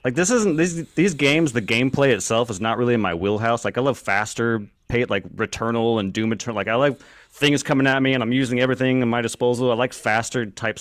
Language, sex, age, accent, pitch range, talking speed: English, male, 30-49, American, 100-130 Hz, 240 wpm